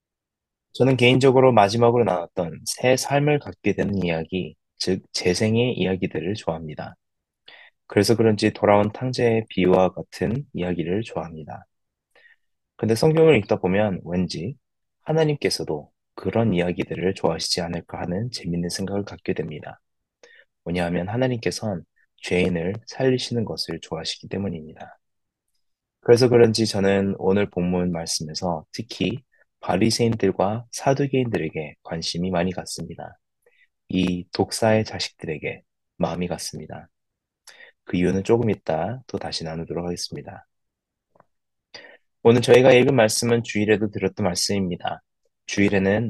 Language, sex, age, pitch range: Korean, male, 20-39, 90-115 Hz